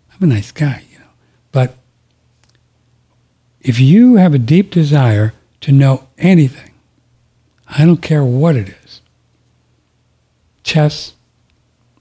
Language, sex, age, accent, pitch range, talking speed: English, male, 60-79, American, 120-150 Hz, 110 wpm